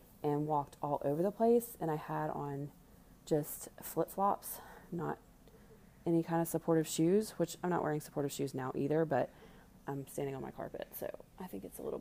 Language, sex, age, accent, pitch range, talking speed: English, female, 30-49, American, 150-200 Hz, 190 wpm